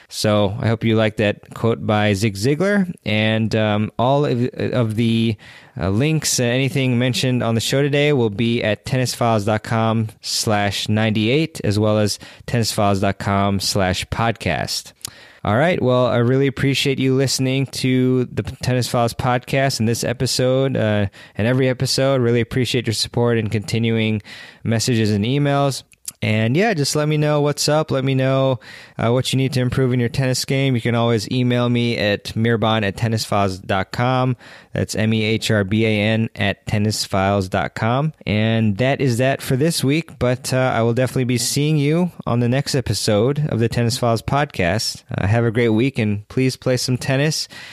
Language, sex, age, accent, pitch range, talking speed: English, male, 20-39, American, 105-130 Hz, 165 wpm